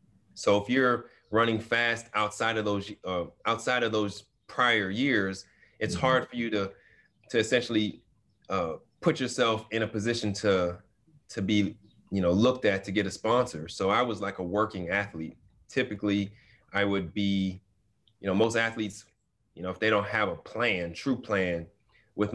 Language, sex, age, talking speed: English, male, 30-49, 170 wpm